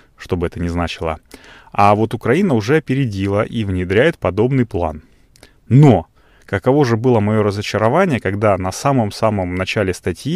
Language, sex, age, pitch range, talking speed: Russian, male, 30-49, 95-125 Hz, 145 wpm